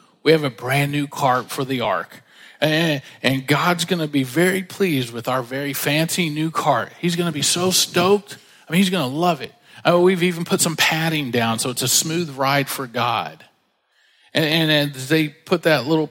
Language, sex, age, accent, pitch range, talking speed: English, male, 40-59, American, 125-155 Hz, 210 wpm